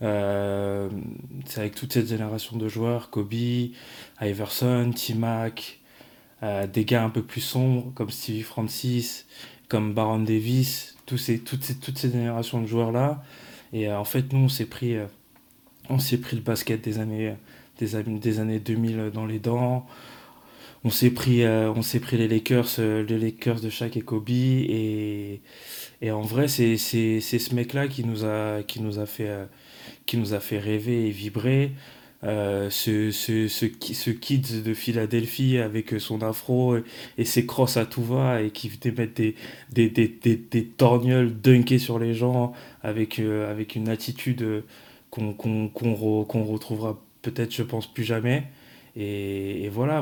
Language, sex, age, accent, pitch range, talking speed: French, male, 20-39, French, 110-120 Hz, 170 wpm